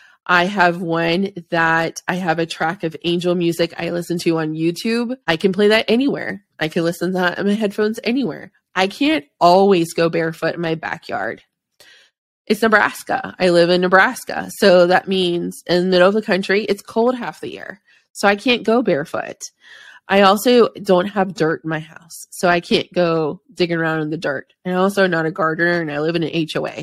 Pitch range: 165-195 Hz